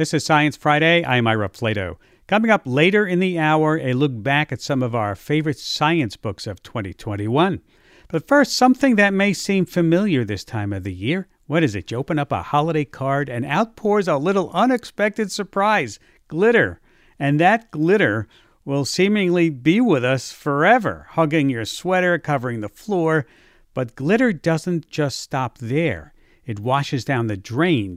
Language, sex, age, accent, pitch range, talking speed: English, male, 50-69, American, 125-175 Hz, 170 wpm